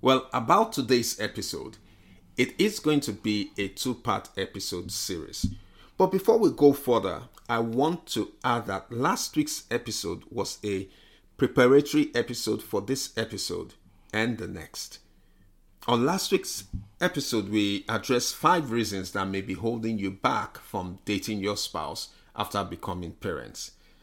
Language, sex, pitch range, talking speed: English, male, 100-135 Hz, 140 wpm